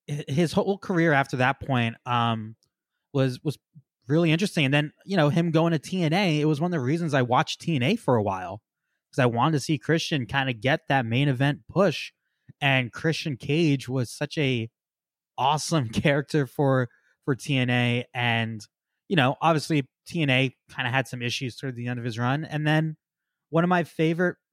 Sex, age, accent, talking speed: male, 20-39, American, 190 wpm